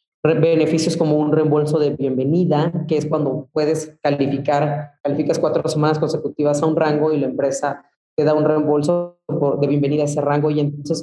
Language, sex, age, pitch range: Spanish, female, 30-49, 155-185 Hz